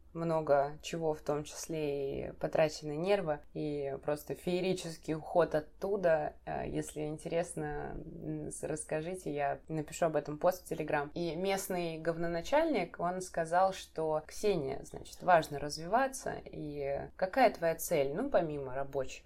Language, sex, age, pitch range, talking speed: Russian, female, 20-39, 155-185 Hz, 125 wpm